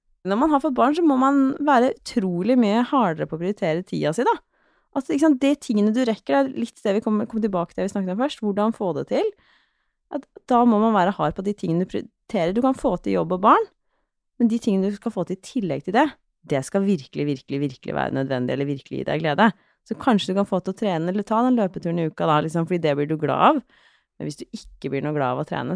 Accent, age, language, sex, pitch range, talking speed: Norwegian, 30-49, English, female, 155-255 Hz, 270 wpm